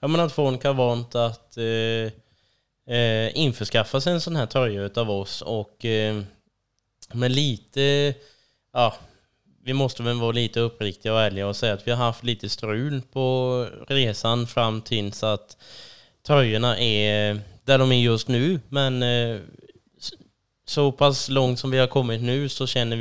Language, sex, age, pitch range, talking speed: Swedish, male, 20-39, 105-125 Hz, 160 wpm